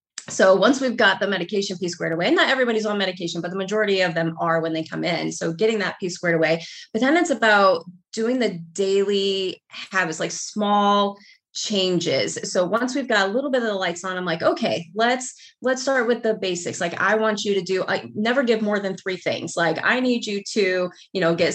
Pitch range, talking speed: 180-230 Hz, 225 wpm